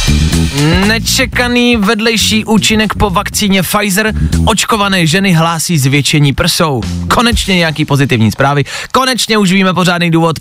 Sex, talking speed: male, 115 wpm